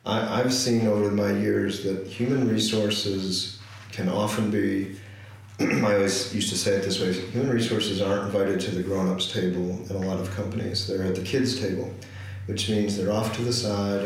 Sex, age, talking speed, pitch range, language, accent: male, 40-59, 195 wpm, 95-105 Hz, English, American